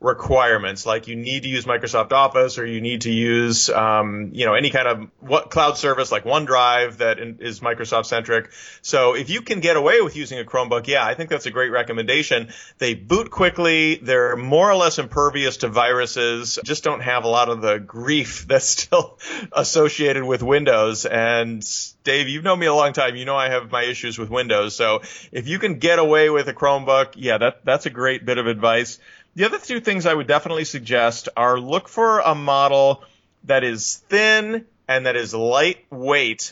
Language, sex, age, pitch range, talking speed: English, male, 30-49, 115-150 Hz, 200 wpm